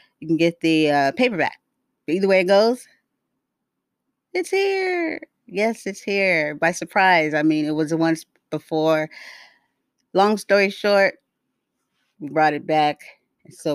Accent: American